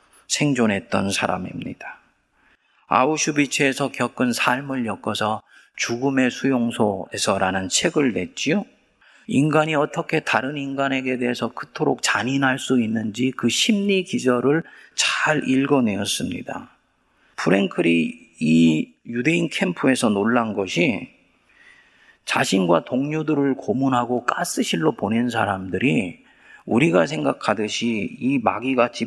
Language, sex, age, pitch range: Korean, male, 40-59, 110-145 Hz